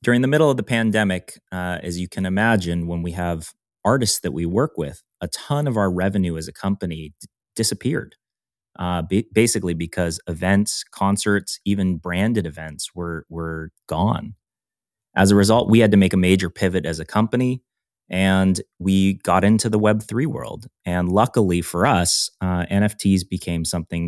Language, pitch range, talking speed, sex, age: English, 85-100 Hz, 175 wpm, male, 30-49